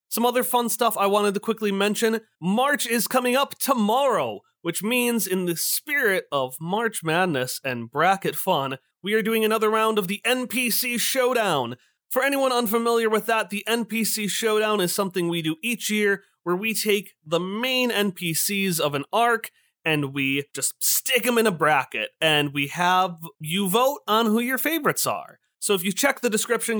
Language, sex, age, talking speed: English, male, 30-49, 180 wpm